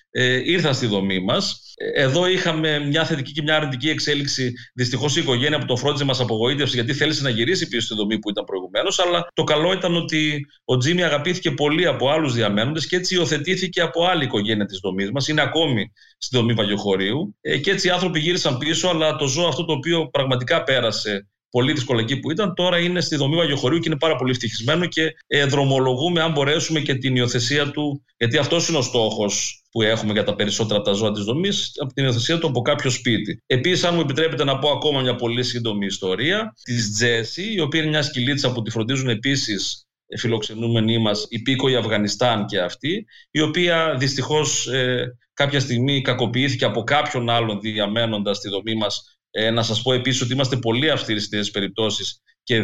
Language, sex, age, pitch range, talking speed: Greek, male, 40-59, 115-155 Hz, 195 wpm